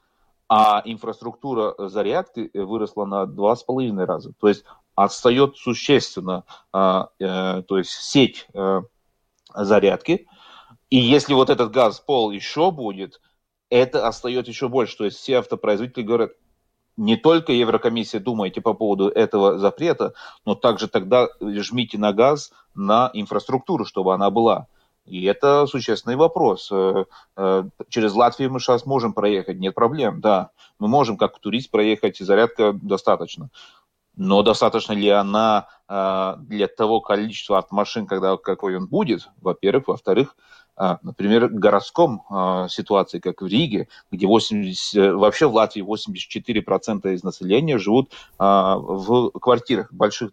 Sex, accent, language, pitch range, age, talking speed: male, native, Russian, 100-125 Hz, 30-49, 125 wpm